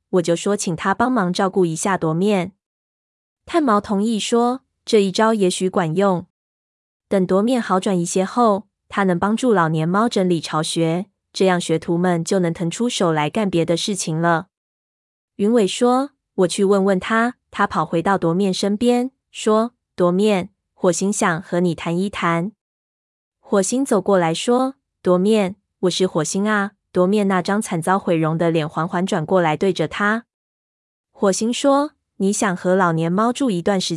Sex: female